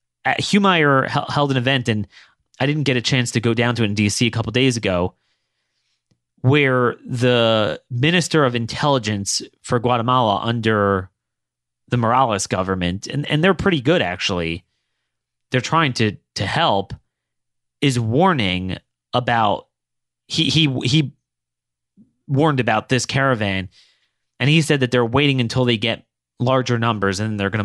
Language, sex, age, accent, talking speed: English, male, 30-49, American, 150 wpm